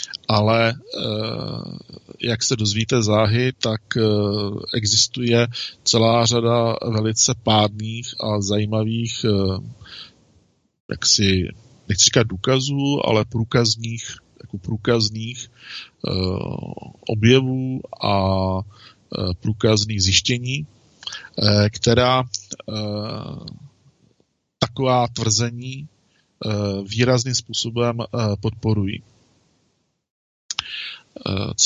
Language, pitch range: Czech, 105-125 Hz